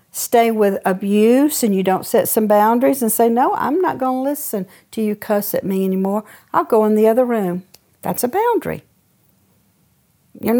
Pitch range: 190-250 Hz